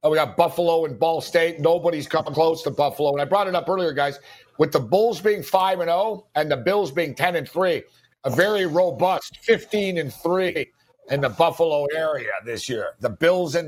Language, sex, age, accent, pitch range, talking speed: English, male, 50-69, American, 165-250 Hz, 210 wpm